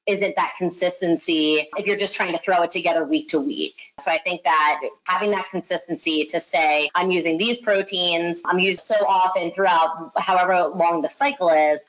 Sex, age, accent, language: female, 30-49, American, English